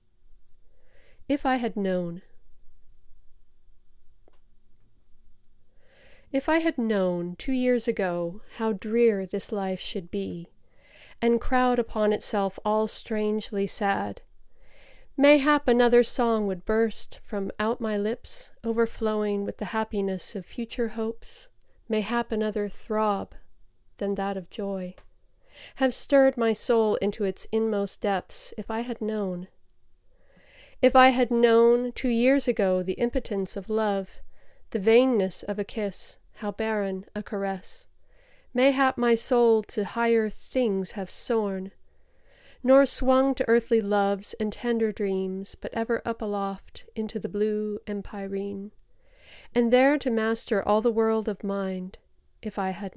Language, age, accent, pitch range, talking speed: English, 40-59, American, 200-235 Hz, 130 wpm